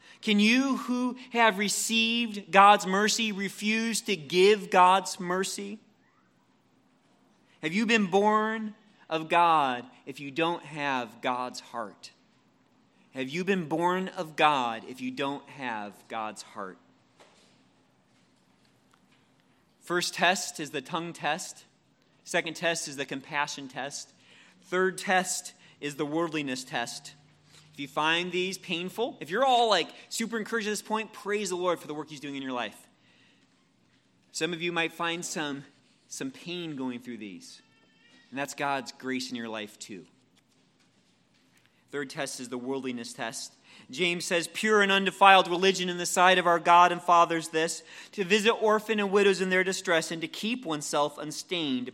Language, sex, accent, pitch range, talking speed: English, male, American, 140-200 Hz, 155 wpm